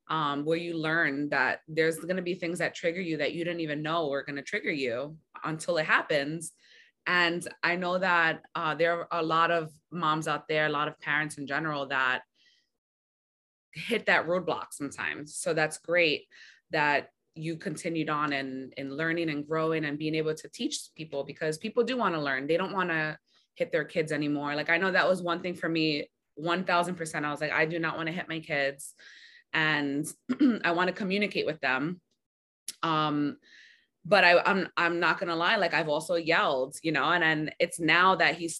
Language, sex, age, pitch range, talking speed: English, female, 20-39, 150-180 Hz, 205 wpm